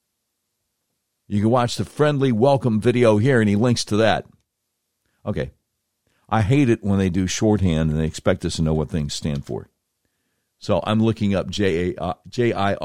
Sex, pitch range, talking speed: male, 105-135 Hz, 180 wpm